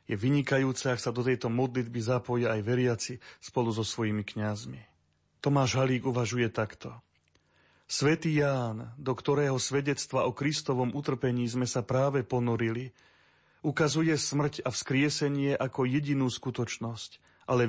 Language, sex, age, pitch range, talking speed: Slovak, male, 40-59, 115-140 Hz, 130 wpm